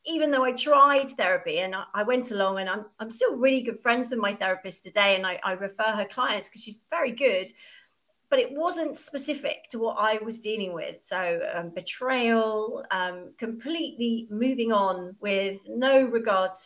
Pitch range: 190-255 Hz